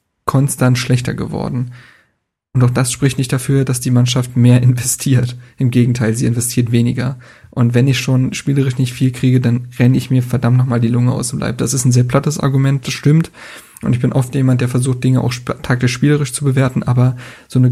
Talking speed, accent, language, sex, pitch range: 210 wpm, German, German, male, 125-135 Hz